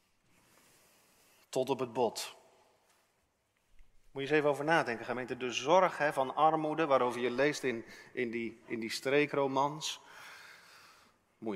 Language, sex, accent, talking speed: Dutch, male, Dutch, 135 wpm